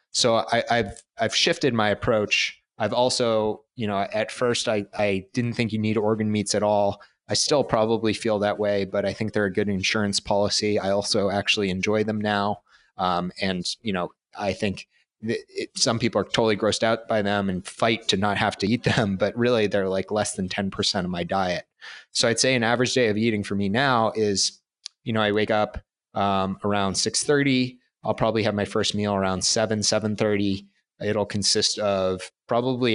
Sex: male